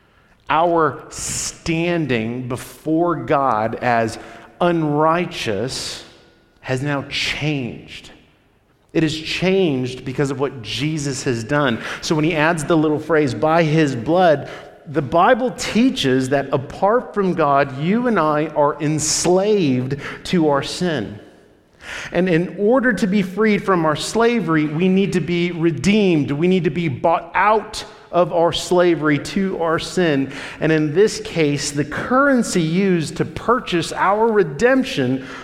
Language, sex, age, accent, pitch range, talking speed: English, male, 40-59, American, 135-175 Hz, 135 wpm